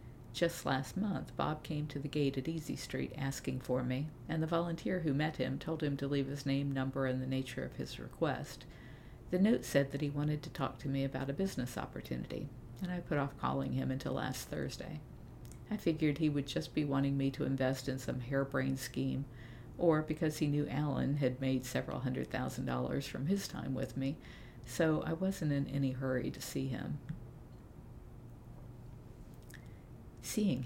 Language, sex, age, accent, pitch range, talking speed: English, female, 50-69, American, 130-155 Hz, 190 wpm